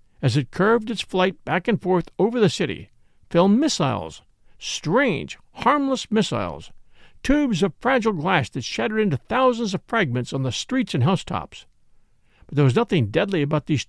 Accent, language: American, English